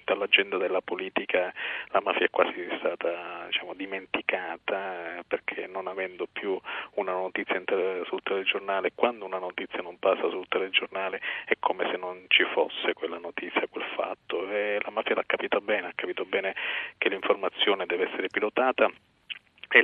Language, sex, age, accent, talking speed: Italian, male, 40-59, native, 150 wpm